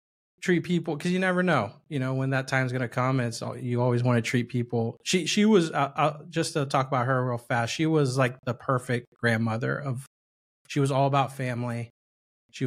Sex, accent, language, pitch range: male, American, English, 120-140 Hz